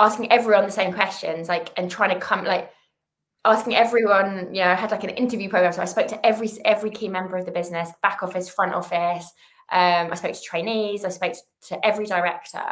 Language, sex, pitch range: English, female, 170-210 Hz